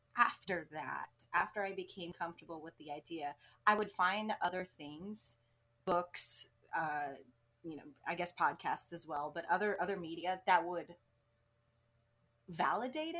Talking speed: 135 wpm